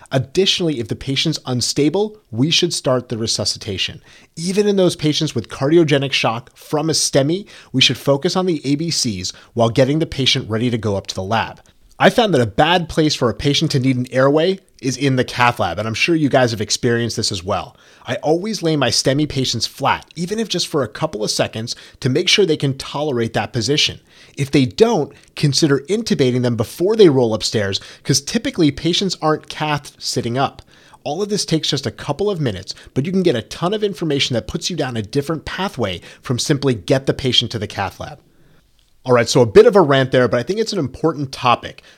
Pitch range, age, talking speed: 120-160 Hz, 30-49, 220 wpm